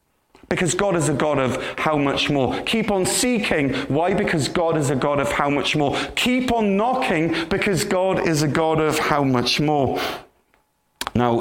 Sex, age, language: male, 30-49, English